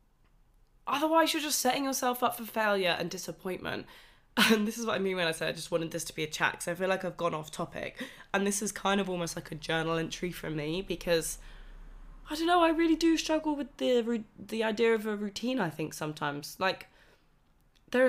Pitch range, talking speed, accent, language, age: 165-220 Hz, 220 wpm, British, English, 10-29